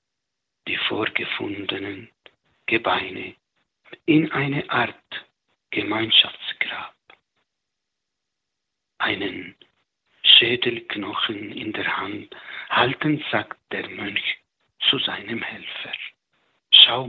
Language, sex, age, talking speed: German, male, 60-79, 70 wpm